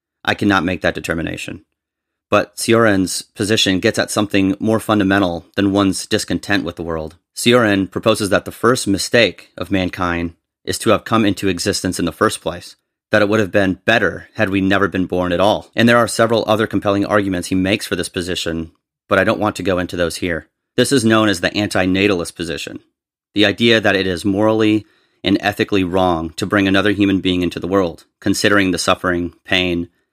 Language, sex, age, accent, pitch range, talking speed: English, male, 30-49, American, 90-105 Hz, 195 wpm